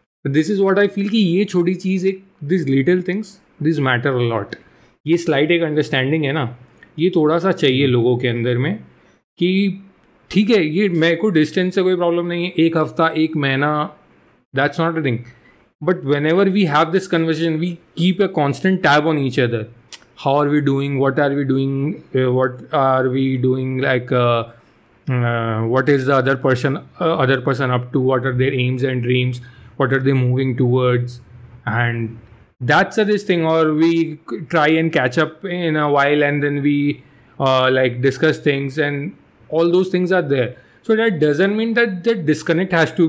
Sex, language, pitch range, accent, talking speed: male, English, 130-175 Hz, Indian, 175 wpm